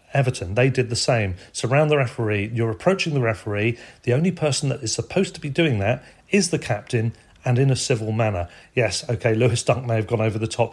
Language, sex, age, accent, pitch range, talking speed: English, male, 40-59, British, 115-150 Hz, 225 wpm